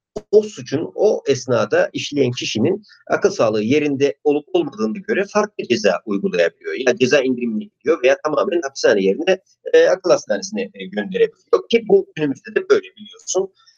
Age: 50-69